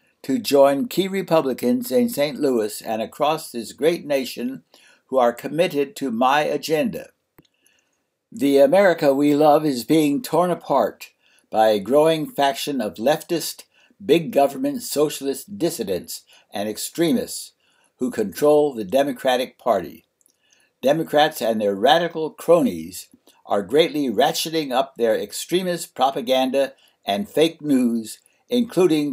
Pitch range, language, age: 120-165 Hz, English, 60-79